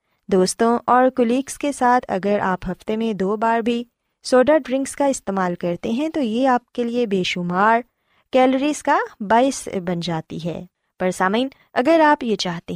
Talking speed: 175 wpm